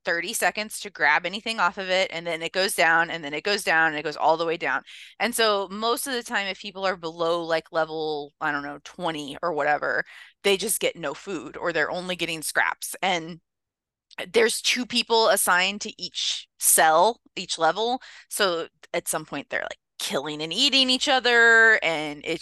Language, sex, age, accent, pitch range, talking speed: English, female, 20-39, American, 165-220 Hz, 205 wpm